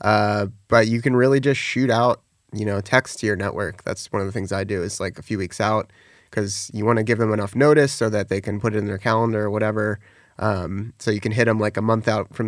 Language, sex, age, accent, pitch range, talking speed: English, male, 30-49, American, 105-115 Hz, 275 wpm